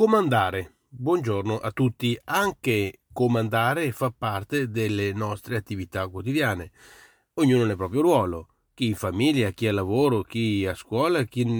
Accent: native